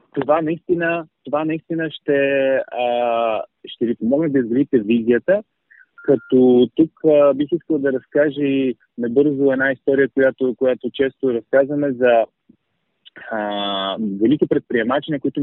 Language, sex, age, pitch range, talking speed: Bulgarian, male, 30-49, 115-140 Hz, 115 wpm